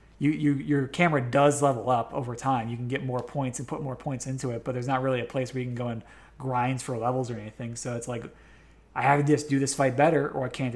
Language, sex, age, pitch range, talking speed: English, male, 30-49, 120-140 Hz, 280 wpm